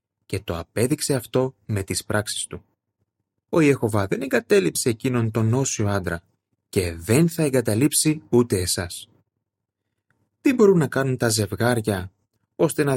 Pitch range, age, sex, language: 100-125 Hz, 30-49, male, Greek